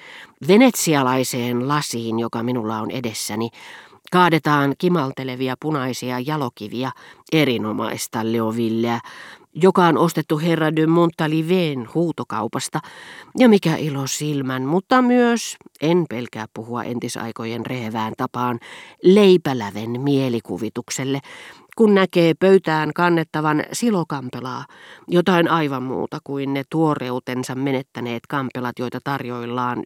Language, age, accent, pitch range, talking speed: Finnish, 40-59, native, 125-170 Hz, 95 wpm